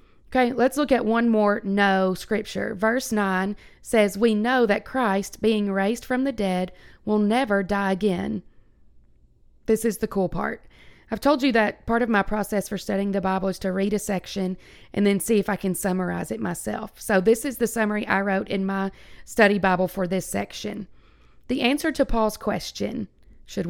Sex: female